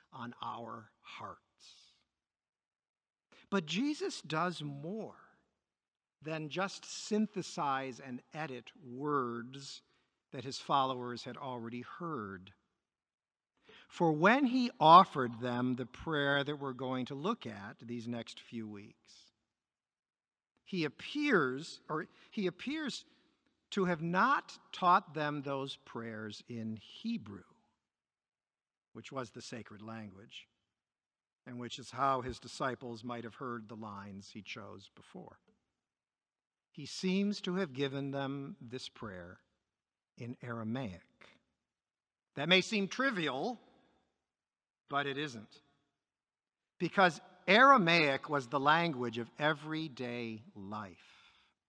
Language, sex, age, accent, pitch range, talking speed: English, male, 50-69, American, 120-175 Hz, 105 wpm